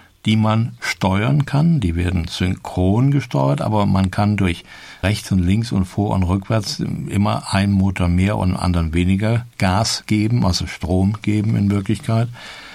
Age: 60-79